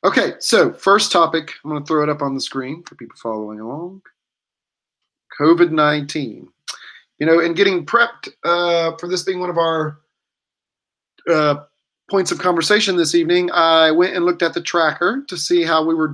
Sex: male